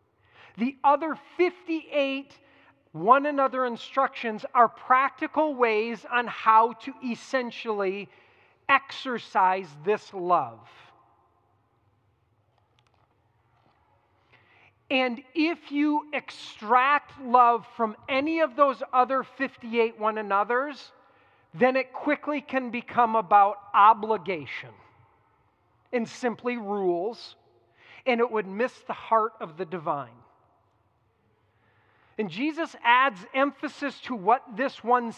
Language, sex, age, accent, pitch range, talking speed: English, male, 40-59, American, 195-270 Hz, 95 wpm